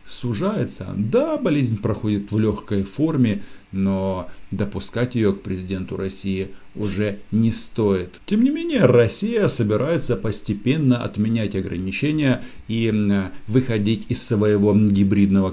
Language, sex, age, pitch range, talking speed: Russian, male, 50-69, 95-125 Hz, 110 wpm